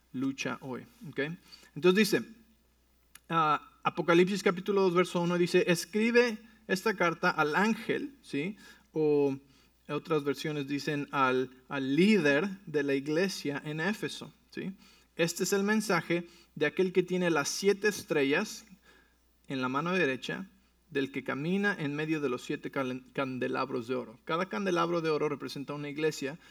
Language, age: English, 40-59